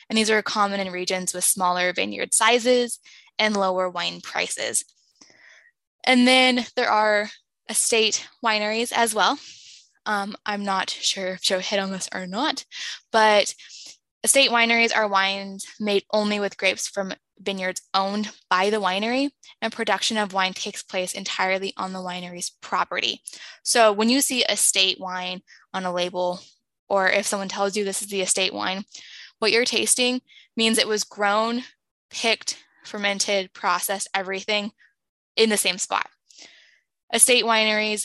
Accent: American